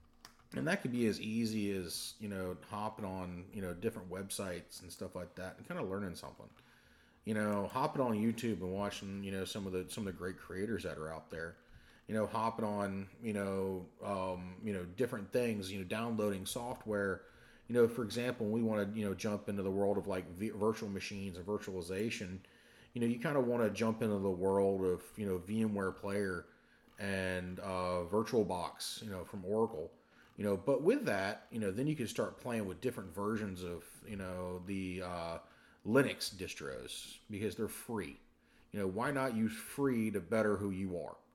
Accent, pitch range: American, 95-110 Hz